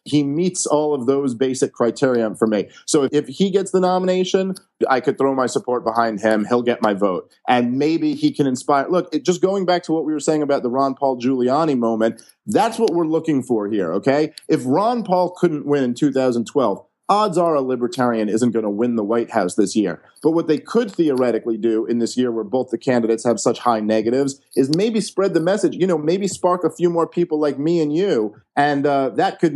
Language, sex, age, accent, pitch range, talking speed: English, male, 40-59, American, 125-175 Hz, 225 wpm